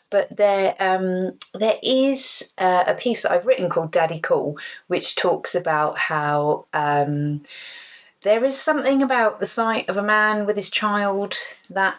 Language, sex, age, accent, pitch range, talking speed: English, female, 30-49, British, 160-210 Hz, 165 wpm